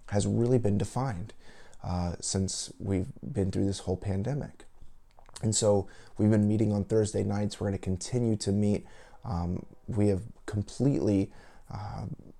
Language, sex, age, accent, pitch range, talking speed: English, male, 30-49, American, 90-105 Hz, 145 wpm